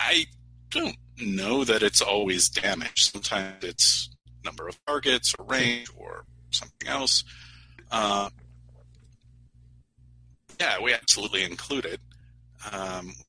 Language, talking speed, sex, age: English, 110 wpm, male, 40-59